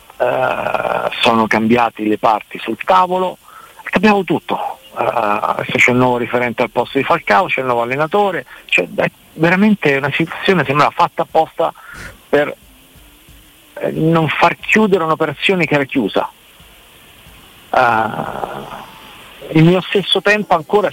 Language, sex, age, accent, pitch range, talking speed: Italian, male, 50-69, native, 125-165 Hz, 130 wpm